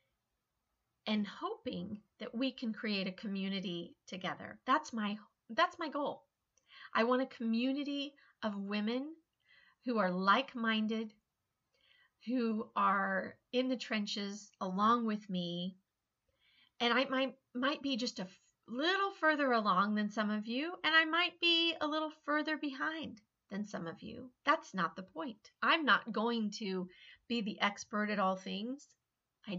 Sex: female